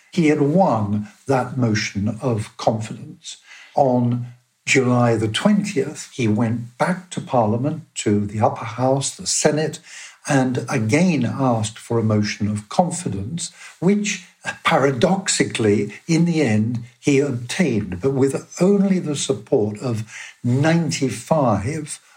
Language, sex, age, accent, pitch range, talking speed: English, male, 60-79, British, 110-155 Hz, 120 wpm